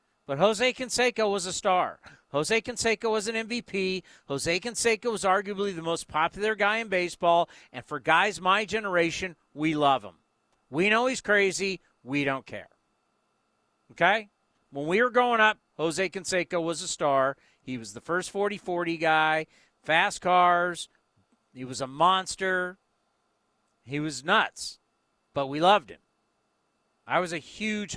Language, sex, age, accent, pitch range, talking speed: English, male, 50-69, American, 155-215 Hz, 150 wpm